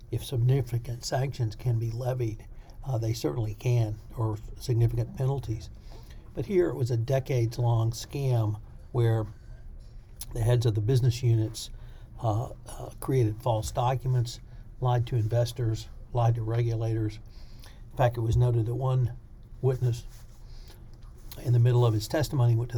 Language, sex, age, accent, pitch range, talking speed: English, male, 60-79, American, 115-125 Hz, 140 wpm